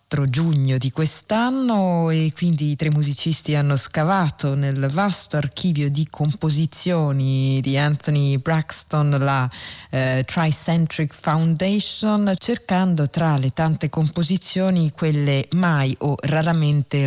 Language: Italian